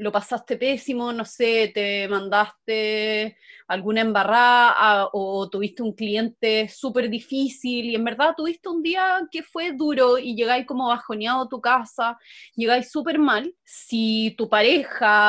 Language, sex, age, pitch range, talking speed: Spanish, female, 20-39, 215-265 Hz, 150 wpm